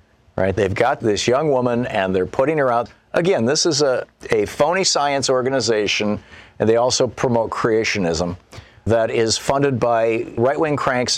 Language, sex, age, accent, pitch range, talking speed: English, male, 50-69, American, 95-125 Hz, 155 wpm